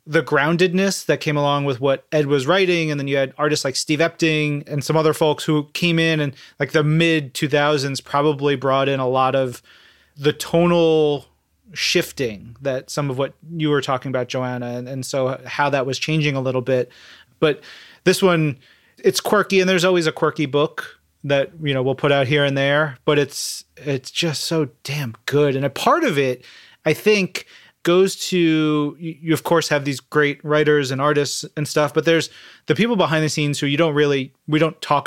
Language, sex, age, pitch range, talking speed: English, male, 30-49, 135-160 Hz, 200 wpm